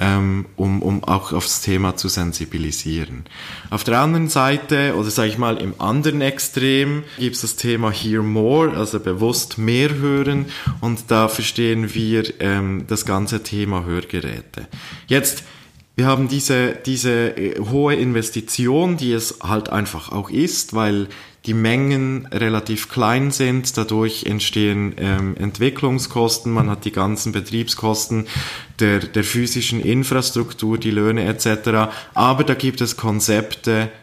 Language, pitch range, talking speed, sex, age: German, 100-125 Hz, 135 wpm, male, 20-39